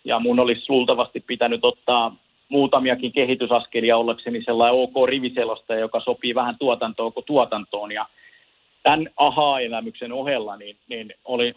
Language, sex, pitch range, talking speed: Finnish, male, 120-135 Hz, 125 wpm